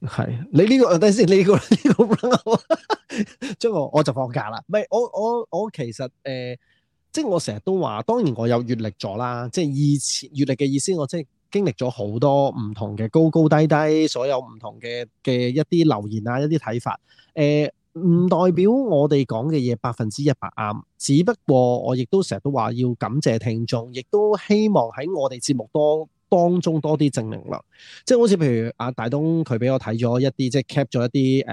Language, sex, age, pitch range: Chinese, male, 20-39, 120-165 Hz